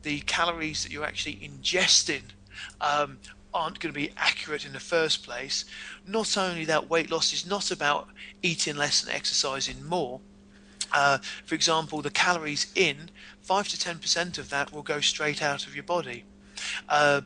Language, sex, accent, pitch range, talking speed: English, male, British, 145-180 Hz, 170 wpm